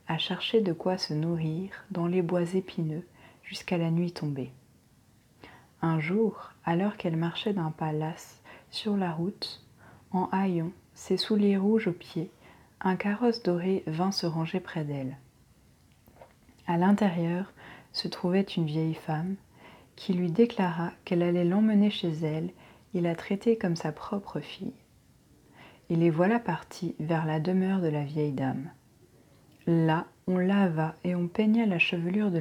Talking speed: 150 wpm